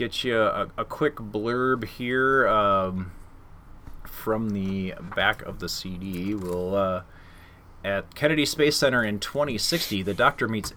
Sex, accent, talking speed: male, American, 140 wpm